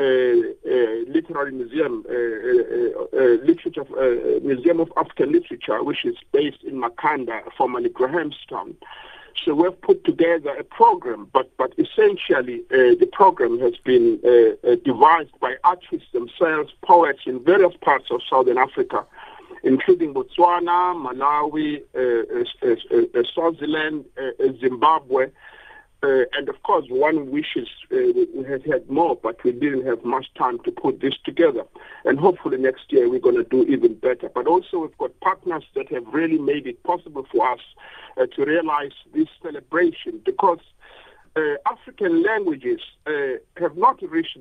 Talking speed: 160 wpm